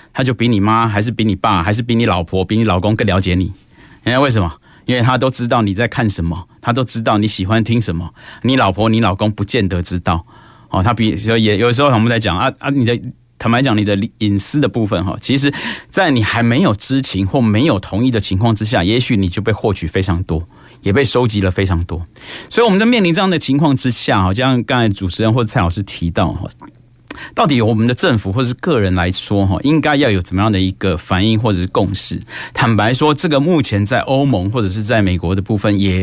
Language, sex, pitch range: Chinese, male, 100-125 Hz